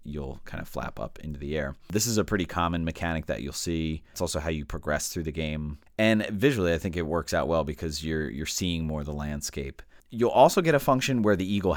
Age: 30-49